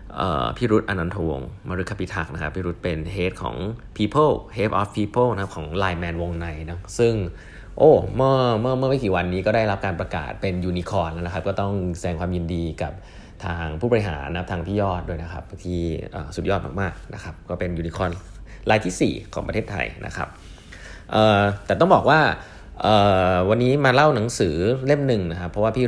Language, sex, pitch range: Thai, male, 85-110 Hz